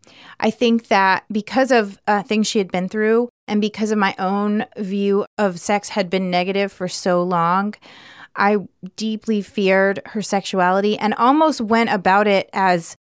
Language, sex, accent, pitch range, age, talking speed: English, female, American, 190-225 Hz, 30-49, 165 wpm